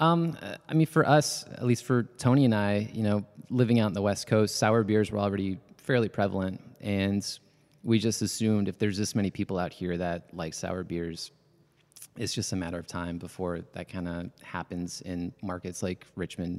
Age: 20-39